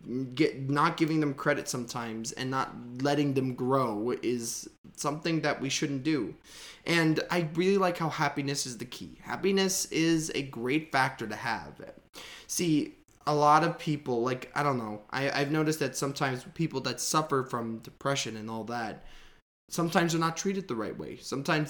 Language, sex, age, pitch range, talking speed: English, male, 20-39, 120-155 Hz, 170 wpm